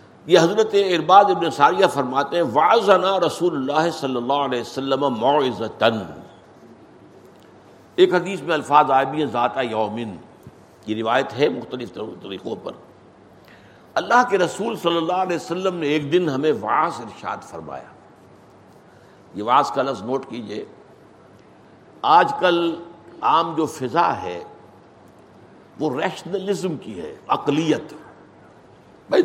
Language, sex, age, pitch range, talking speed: Urdu, male, 60-79, 135-190 Hz, 125 wpm